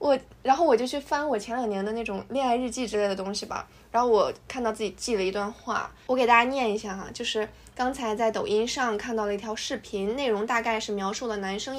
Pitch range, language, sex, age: 210-265 Hz, Chinese, female, 20-39